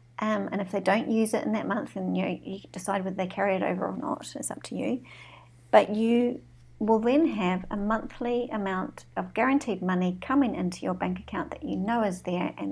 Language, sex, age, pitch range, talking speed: English, female, 50-69, 185-245 Hz, 215 wpm